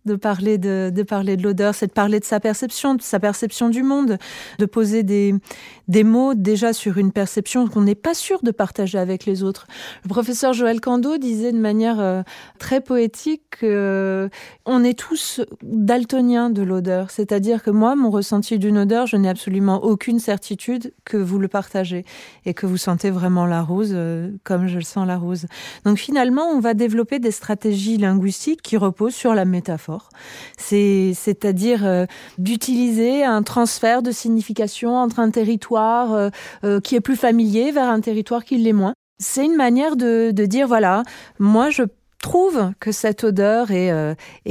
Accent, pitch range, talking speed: French, 190-235 Hz, 180 wpm